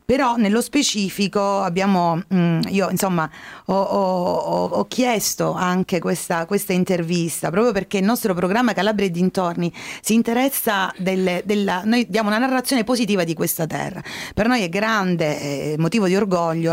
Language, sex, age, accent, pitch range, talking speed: Italian, female, 30-49, native, 180-235 Hz, 155 wpm